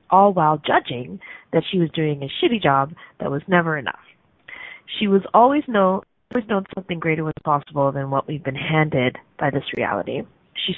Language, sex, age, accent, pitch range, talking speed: English, female, 30-49, American, 155-195 Hz, 185 wpm